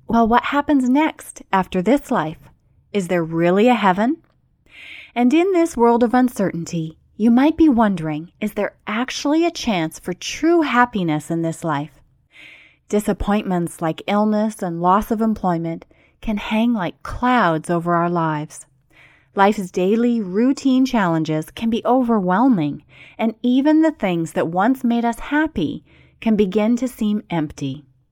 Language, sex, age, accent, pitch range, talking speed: English, female, 30-49, American, 170-250 Hz, 145 wpm